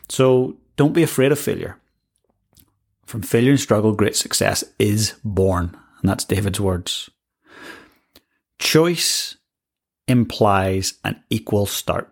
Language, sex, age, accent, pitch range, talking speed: English, male, 30-49, British, 100-125 Hz, 115 wpm